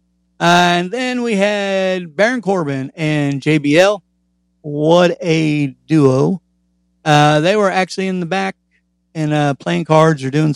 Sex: male